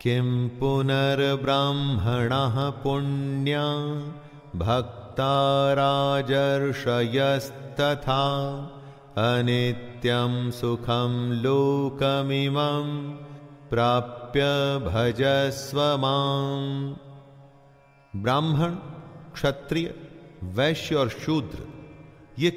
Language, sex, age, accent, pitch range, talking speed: English, male, 40-59, Indian, 120-150 Hz, 45 wpm